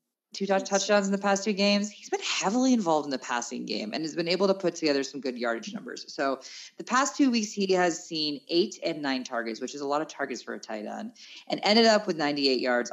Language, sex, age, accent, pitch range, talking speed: English, female, 20-39, American, 160-255 Hz, 250 wpm